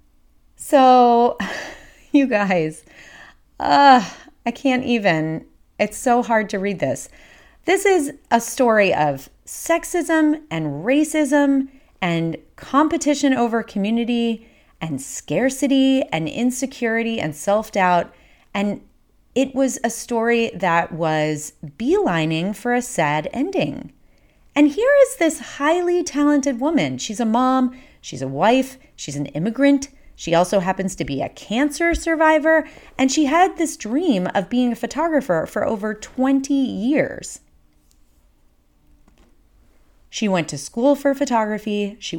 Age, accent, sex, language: 30-49, American, female, English